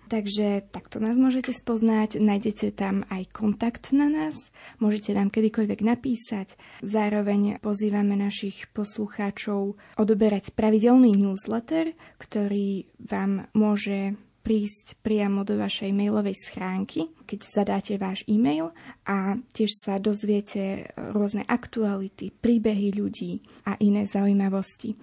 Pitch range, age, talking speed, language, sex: 200-225 Hz, 20-39, 110 wpm, Slovak, female